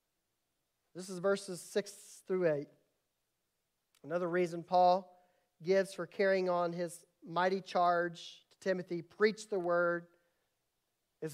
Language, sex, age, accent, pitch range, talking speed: English, male, 40-59, American, 155-190 Hz, 115 wpm